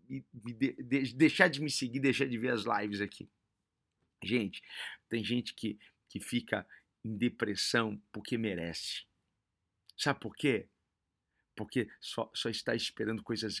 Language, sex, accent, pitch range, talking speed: Portuguese, male, Brazilian, 110-140 Hz, 135 wpm